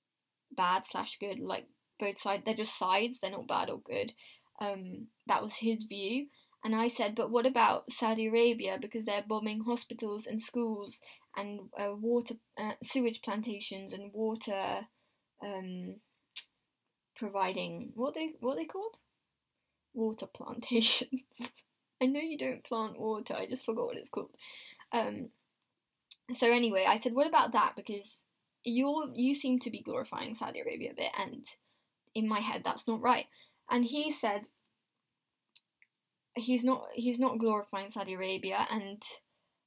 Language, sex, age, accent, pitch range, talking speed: English, female, 10-29, British, 205-250 Hz, 150 wpm